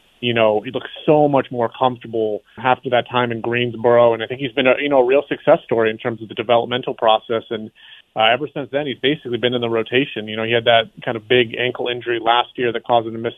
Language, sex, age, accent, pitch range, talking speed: English, male, 30-49, American, 120-130 Hz, 265 wpm